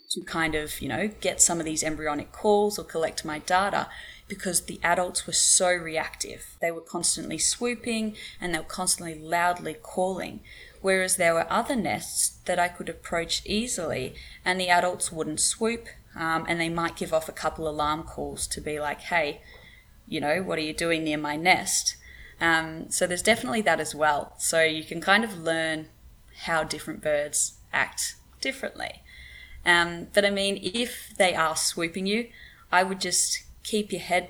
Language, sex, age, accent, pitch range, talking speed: English, female, 20-39, Australian, 160-185 Hz, 180 wpm